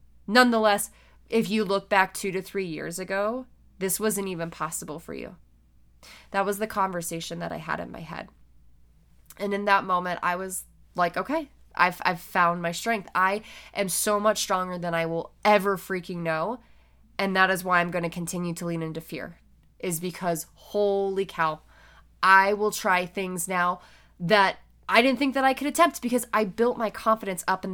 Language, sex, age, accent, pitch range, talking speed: English, female, 10-29, American, 175-225 Hz, 185 wpm